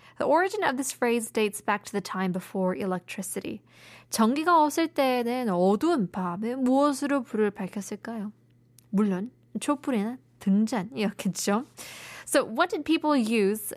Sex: female